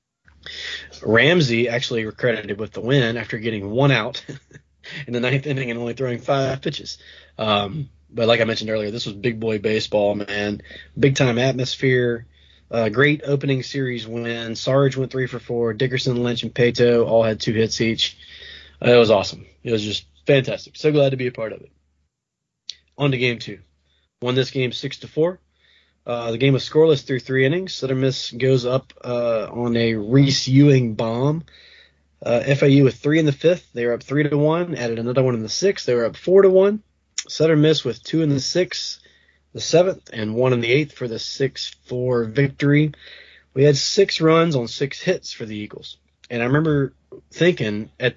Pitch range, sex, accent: 115-140 Hz, male, American